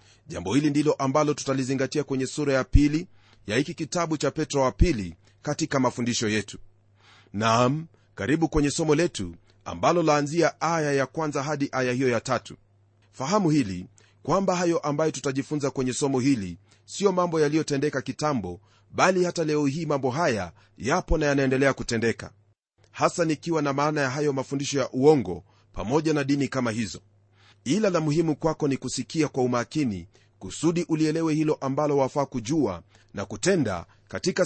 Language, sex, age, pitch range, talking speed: Swahili, male, 40-59, 110-155 Hz, 155 wpm